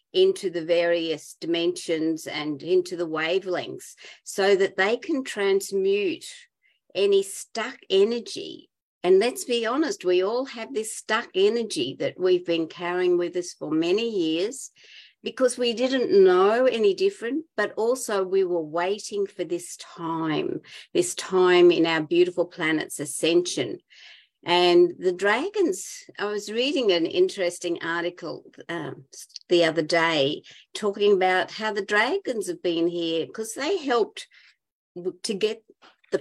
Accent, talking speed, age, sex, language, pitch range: Australian, 140 wpm, 50-69, female, English, 175-265 Hz